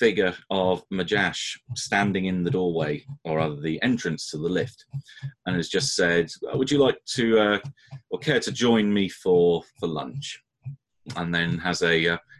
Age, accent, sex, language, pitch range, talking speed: 30-49, British, male, English, 85-125 Hz, 175 wpm